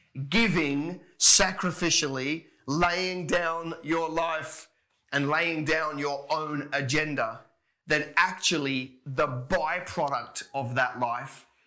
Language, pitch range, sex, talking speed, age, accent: English, 135-165 Hz, male, 100 wpm, 30-49, Australian